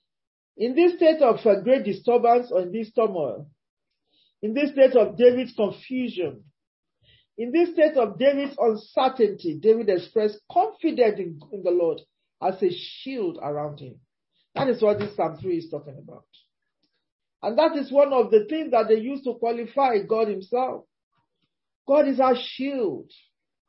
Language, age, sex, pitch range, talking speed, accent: English, 50-69, male, 200-275 Hz, 150 wpm, Nigerian